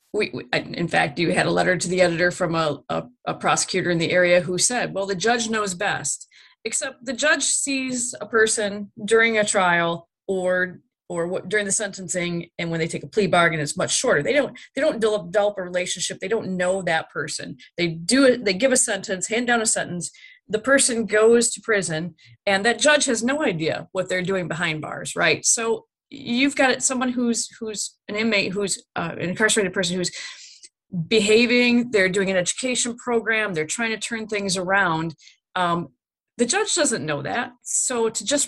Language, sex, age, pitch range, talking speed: English, female, 30-49, 180-230 Hz, 195 wpm